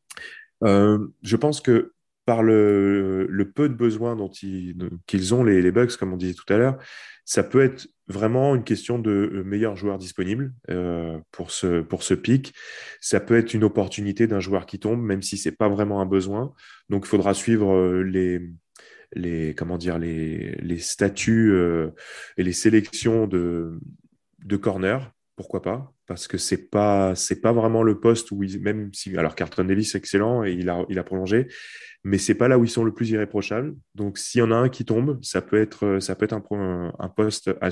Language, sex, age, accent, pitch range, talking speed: French, male, 20-39, French, 95-115 Hz, 205 wpm